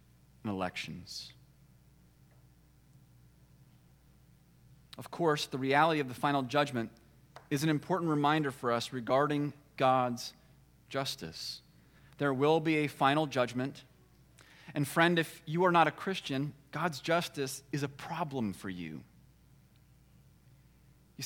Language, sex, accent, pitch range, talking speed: English, male, American, 135-170 Hz, 115 wpm